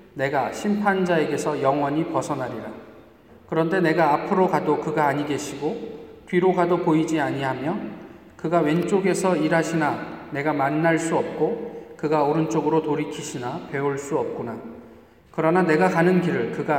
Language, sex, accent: Korean, male, native